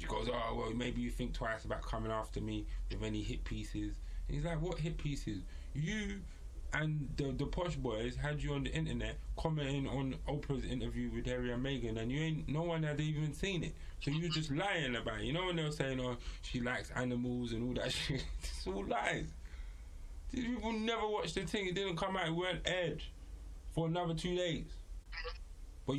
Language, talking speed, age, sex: English, 210 wpm, 20-39, male